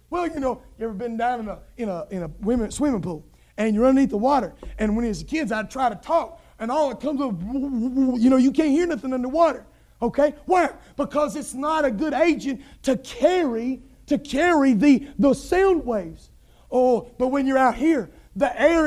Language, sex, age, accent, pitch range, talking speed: English, male, 30-49, American, 225-305 Hz, 205 wpm